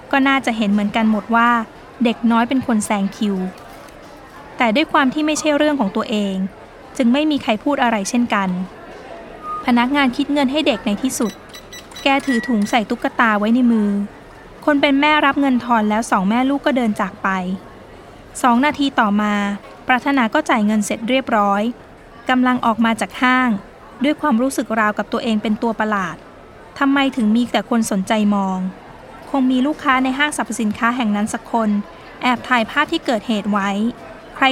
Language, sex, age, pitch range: Thai, female, 20-39, 215-265 Hz